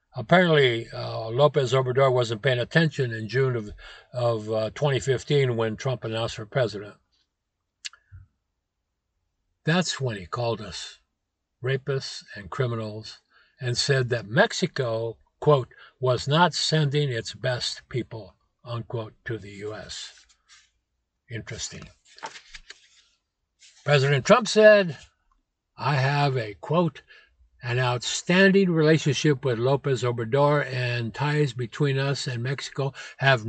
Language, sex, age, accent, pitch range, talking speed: English, male, 60-79, American, 110-150 Hz, 110 wpm